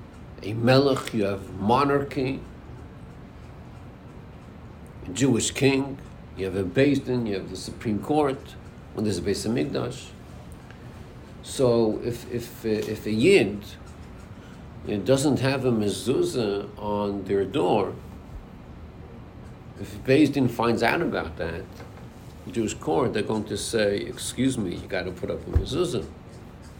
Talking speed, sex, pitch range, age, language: 130 wpm, male, 100-135 Hz, 60-79, English